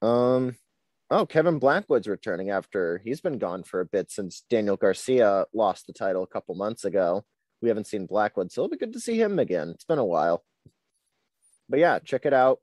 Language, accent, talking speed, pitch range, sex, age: English, American, 205 wpm, 110-135 Hz, male, 30-49